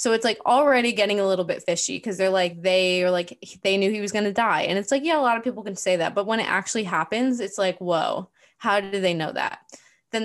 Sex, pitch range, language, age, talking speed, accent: female, 180-220 Hz, English, 10-29, 270 wpm, American